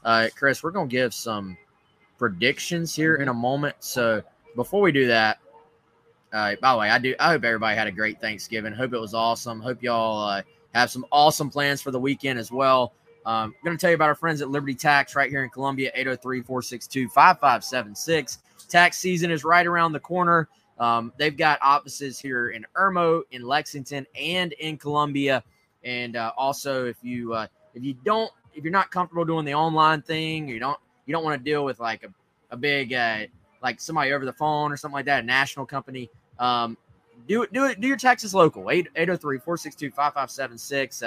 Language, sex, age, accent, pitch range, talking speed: English, male, 20-39, American, 120-155 Hz, 195 wpm